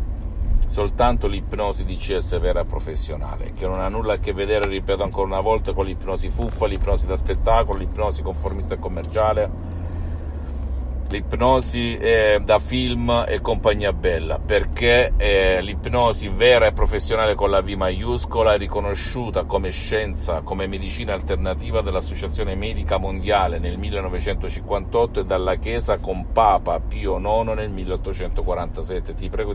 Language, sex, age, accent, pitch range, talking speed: Italian, male, 50-69, native, 80-105 Hz, 140 wpm